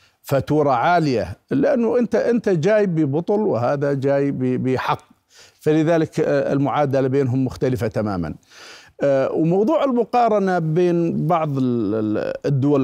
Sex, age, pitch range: male, 50-69, 120-150 Hz